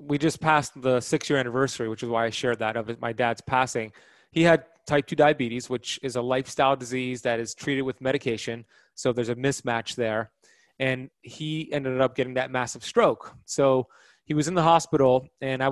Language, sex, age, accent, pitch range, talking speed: English, male, 20-39, American, 120-140 Hz, 200 wpm